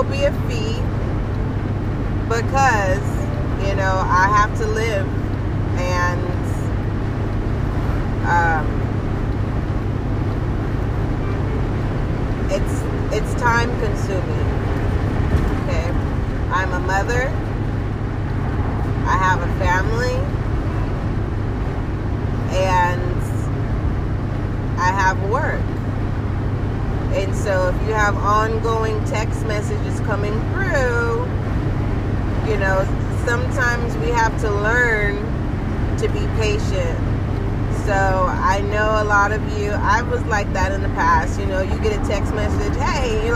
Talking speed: 100 wpm